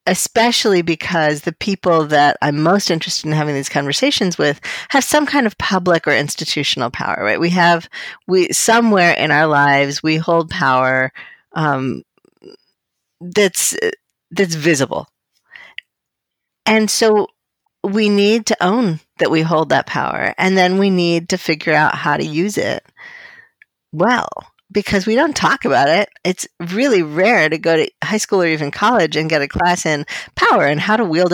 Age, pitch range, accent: 40-59, 155-210 Hz, American